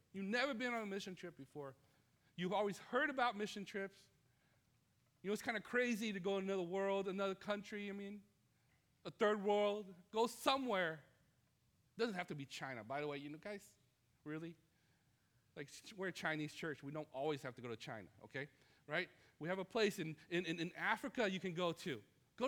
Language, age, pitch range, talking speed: English, 40-59, 140-225 Hz, 200 wpm